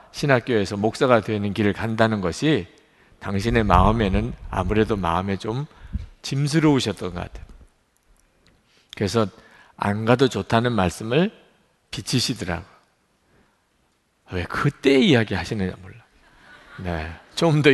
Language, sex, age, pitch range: Korean, male, 50-69, 100-145 Hz